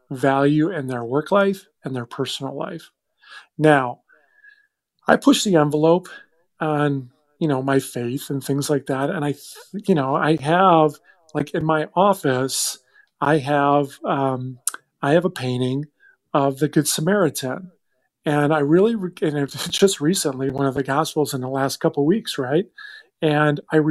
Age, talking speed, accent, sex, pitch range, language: 40-59, 160 wpm, American, male, 140-180 Hz, English